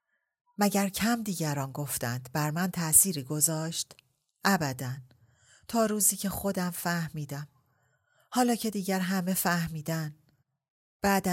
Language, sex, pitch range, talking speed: Persian, female, 140-185 Hz, 105 wpm